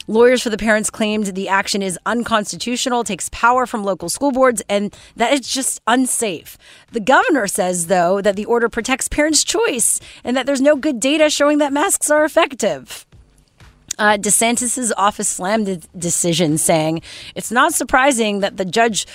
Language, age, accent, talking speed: English, 30-49, American, 170 wpm